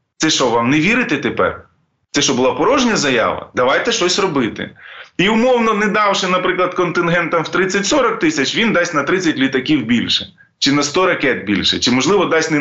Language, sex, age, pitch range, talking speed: Ukrainian, male, 20-39, 145-195 Hz, 180 wpm